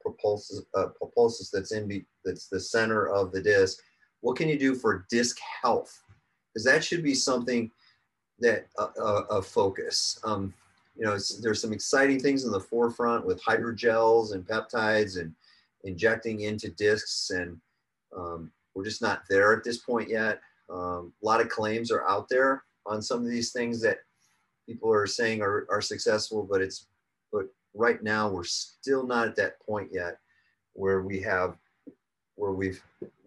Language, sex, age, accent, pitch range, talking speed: English, male, 40-59, American, 95-130 Hz, 165 wpm